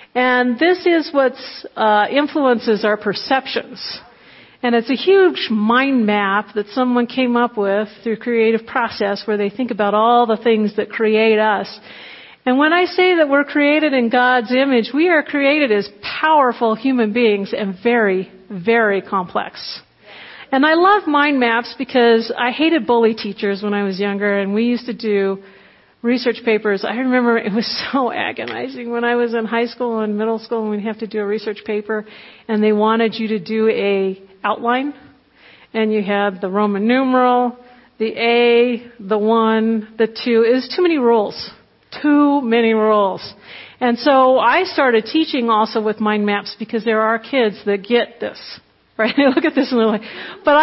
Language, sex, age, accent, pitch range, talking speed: English, female, 50-69, American, 215-260 Hz, 175 wpm